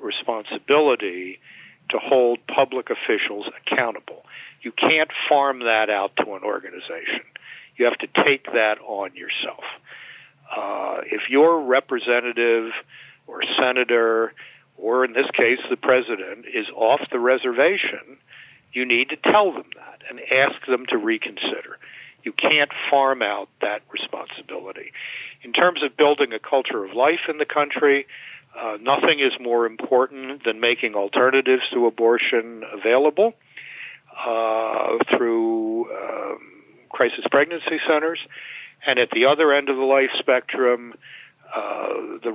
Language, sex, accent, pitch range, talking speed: English, male, American, 115-150 Hz, 130 wpm